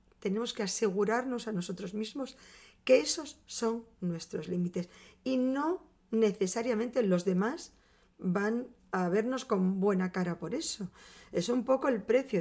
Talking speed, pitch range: 140 wpm, 180-240 Hz